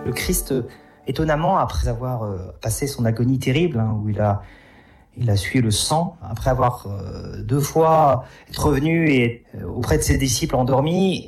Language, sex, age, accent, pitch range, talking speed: French, male, 40-59, French, 120-165 Hz, 170 wpm